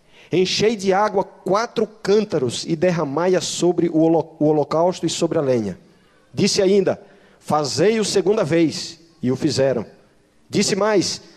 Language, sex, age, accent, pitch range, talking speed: Portuguese, male, 40-59, Brazilian, 150-195 Hz, 125 wpm